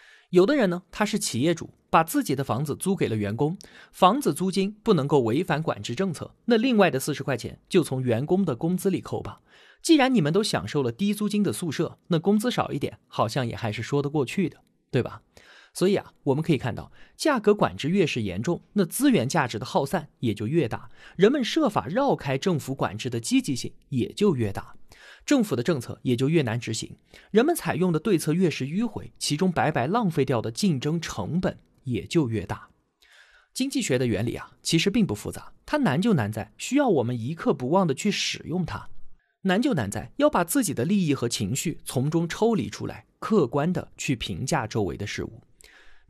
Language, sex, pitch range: Chinese, male, 125-200 Hz